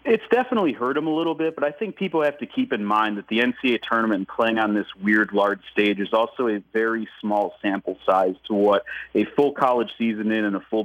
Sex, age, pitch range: male, 30-49, 105-115 Hz